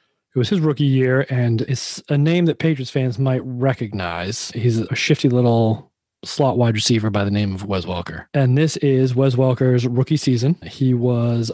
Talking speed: 185 wpm